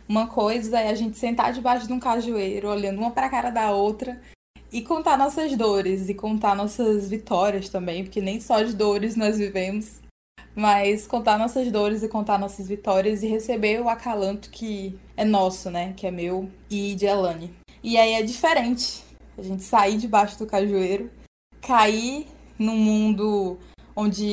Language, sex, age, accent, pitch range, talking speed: Portuguese, female, 20-39, Brazilian, 195-230 Hz, 170 wpm